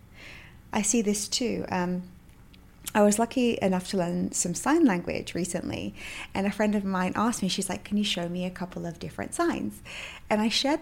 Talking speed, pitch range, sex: 200 wpm, 185-240 Hz, female